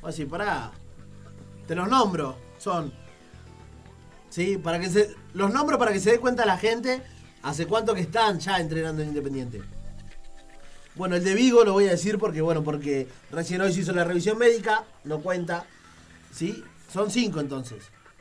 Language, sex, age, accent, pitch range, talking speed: Spanish, male, 20-39, Argentinian, 145-210 Hz, 170 wpm